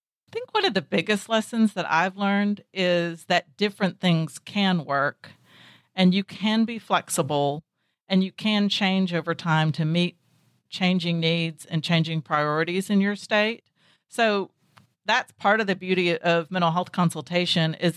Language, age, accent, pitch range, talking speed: English, 50-69, American, 165-200 Hz, 160 wpm